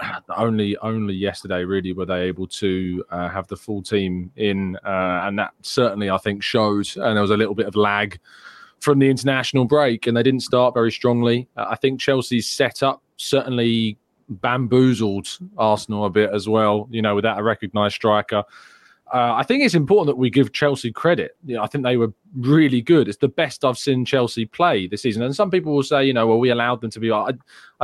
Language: English